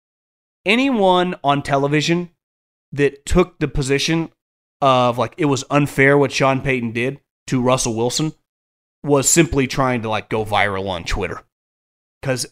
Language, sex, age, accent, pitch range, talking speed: English, male, 30-49, American, 120-155 Hz, 140 wpm